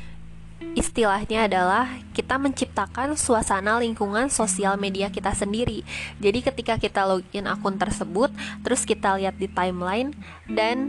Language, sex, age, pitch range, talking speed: Indonesian, female, 20-39, 185-230 Hz, 120 wpm